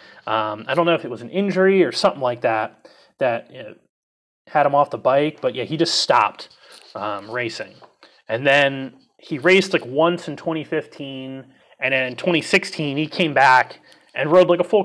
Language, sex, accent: English, male, American